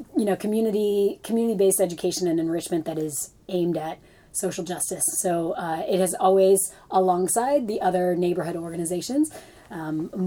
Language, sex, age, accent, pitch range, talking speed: English, female, 20-39, American, 160-190 Hz, 140 wpm